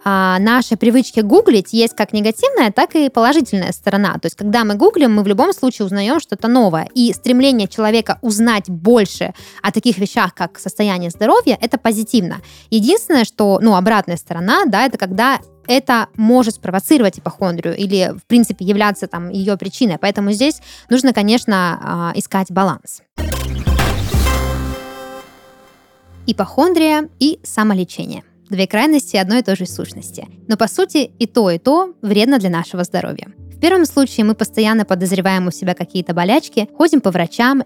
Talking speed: 150 wpm